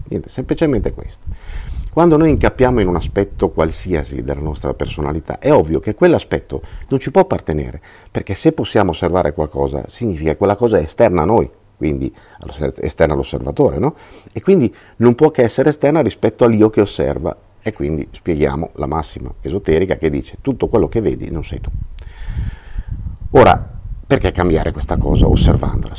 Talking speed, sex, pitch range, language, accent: 160 wpm, male, 80-115 Hz, Italian, native